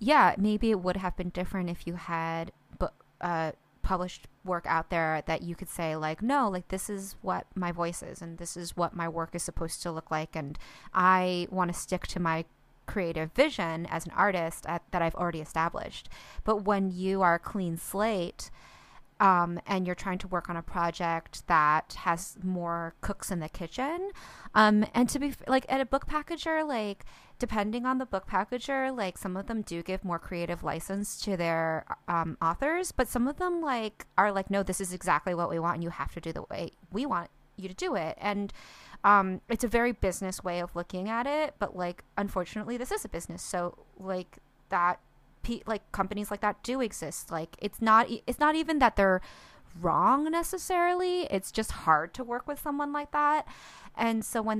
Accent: American